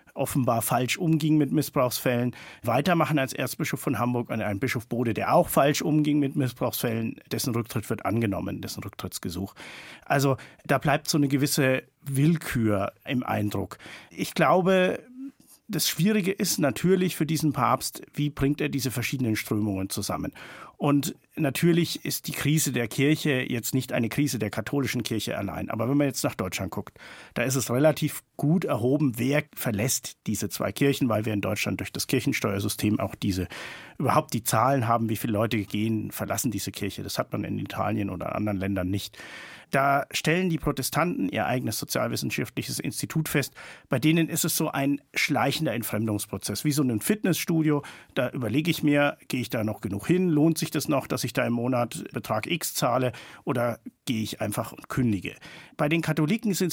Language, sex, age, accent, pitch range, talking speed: German, male, 50-69, German, 110-150 Hz, 175 wpm